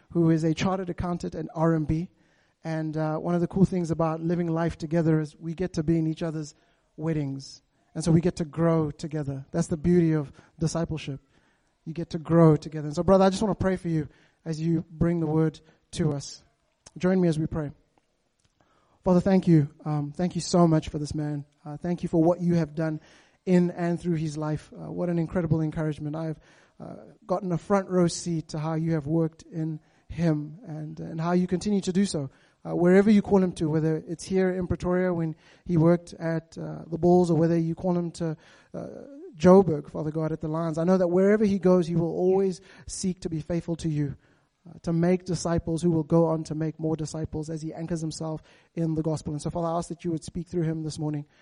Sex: male